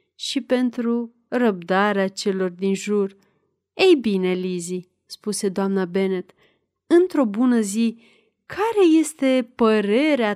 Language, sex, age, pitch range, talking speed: Romanian, female, 30-49, 200-255 Hz, 105 wpm